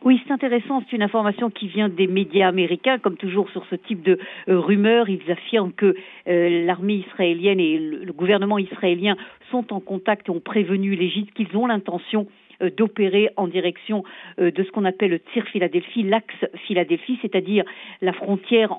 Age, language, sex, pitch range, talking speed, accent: 50-69, French, female, 185-215 Hz, 180 wpm, French